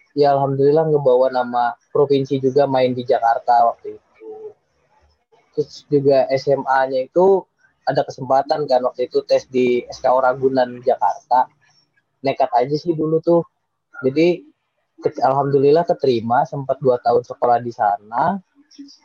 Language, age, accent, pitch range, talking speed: Indonesian, 20-39, native, 135-180 Hz, 125 wpm